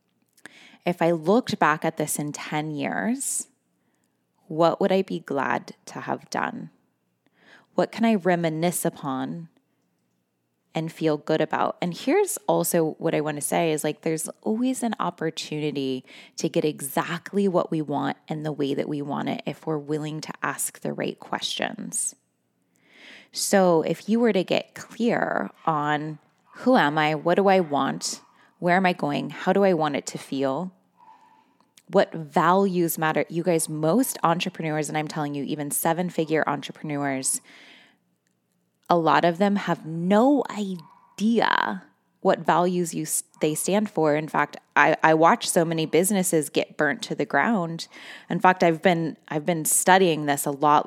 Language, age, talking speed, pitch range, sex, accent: English, 20-39, 160 wpm, 145-180 Hz, female, American